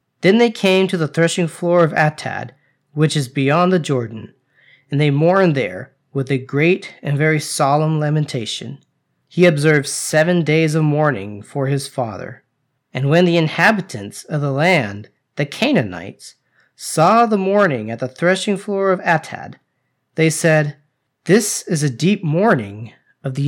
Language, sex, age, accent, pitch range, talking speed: English, male, 40-59, American, 135-175 Hz, 155 wpm